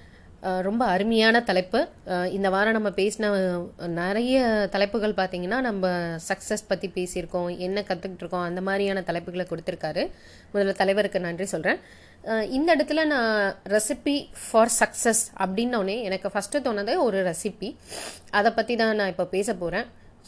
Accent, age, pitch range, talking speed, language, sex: native, 30-49, 190-245 Hz, 125 wpm, Tamil, female